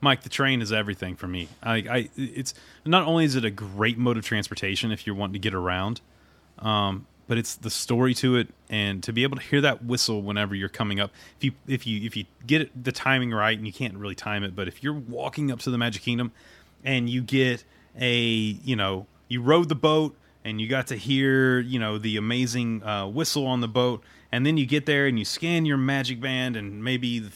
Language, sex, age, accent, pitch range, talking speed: English, male, 30-49, American, 105-135 Hz, 235 wpm